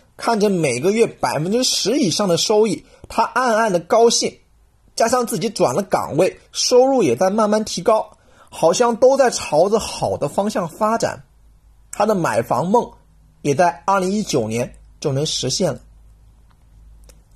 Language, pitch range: Chinese, 155-225 Hz